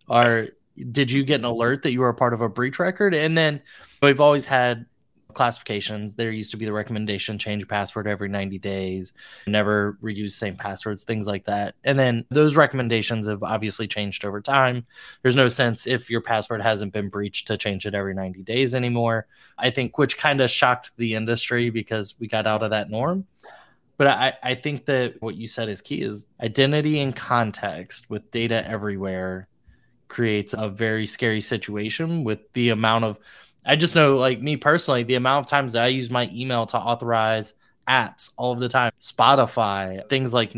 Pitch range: 105-125 Hz